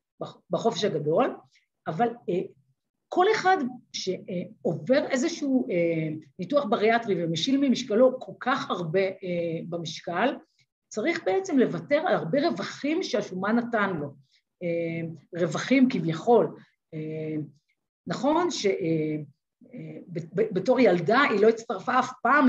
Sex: female